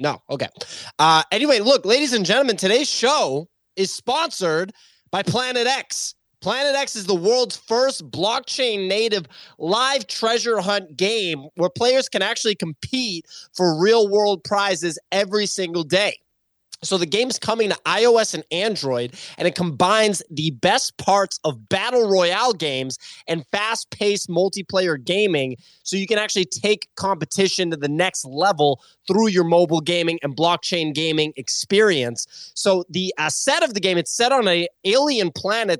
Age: 20-39